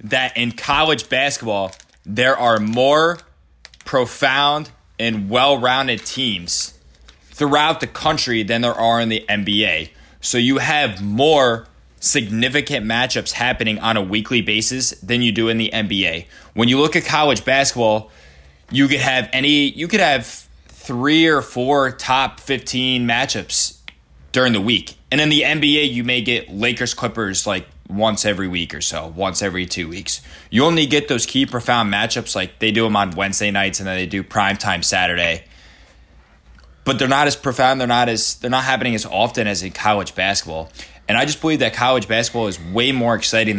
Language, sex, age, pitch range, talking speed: English, male, 20-39, 95-130 Hz, 175 wpm